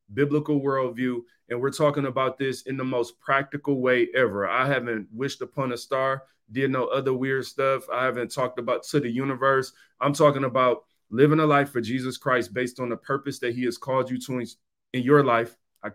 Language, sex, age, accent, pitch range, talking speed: English, male, 30-49, American, 125-145 Hz, 205 wpm